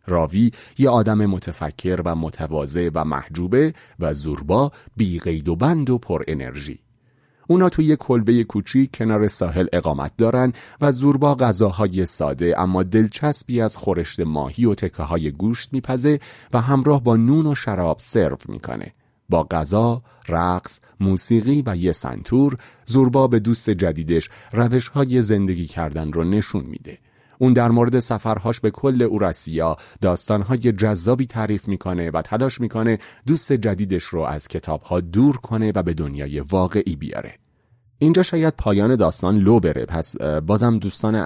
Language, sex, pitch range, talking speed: Persian, male, 85-125 Hz, 145 wpm